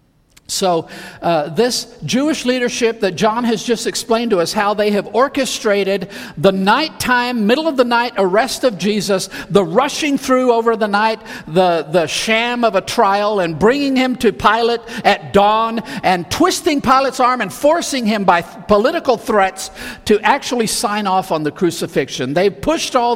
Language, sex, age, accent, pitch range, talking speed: English, male, 50-69, American, 150-225 Hz, 170 wpm